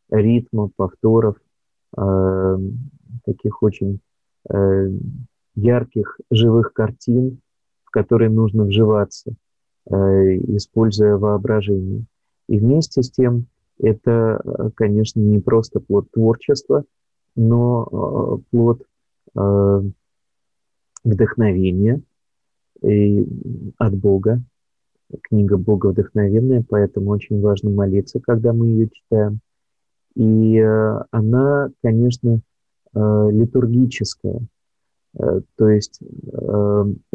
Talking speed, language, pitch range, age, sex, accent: 85 wpm, Russian, 100-120 Hz, 30-49, male, native